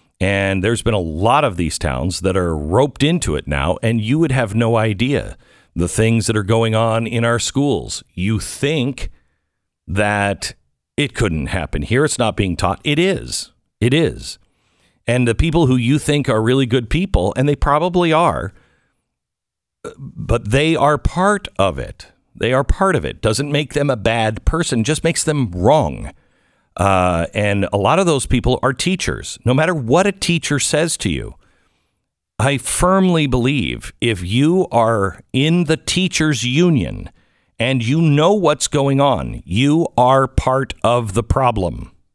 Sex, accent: male, American